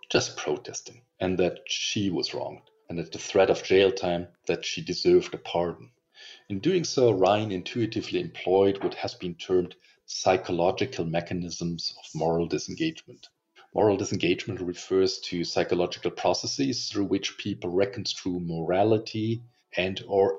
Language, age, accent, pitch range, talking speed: Italian, 40-59, German, 90-120 Hz, 140 wpm